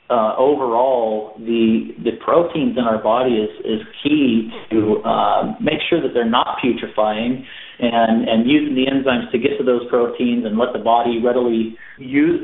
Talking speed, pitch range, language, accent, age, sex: 170 wpm, 120-155 Hz, English, American, 40-59, male